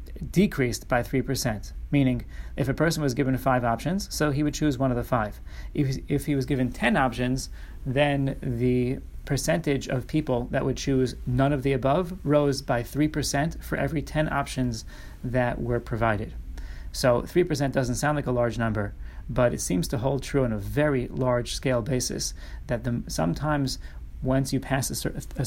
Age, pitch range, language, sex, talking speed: 30-49, 115-140 Hz, English, male, 175 wpm